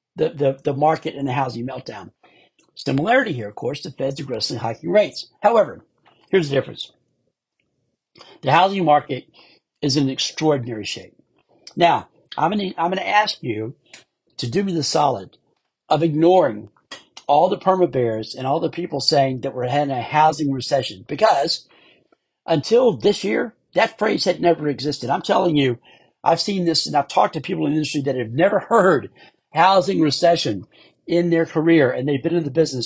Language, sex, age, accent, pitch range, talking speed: English, male, 60-79, American, 140-170 Hz, 175 wpm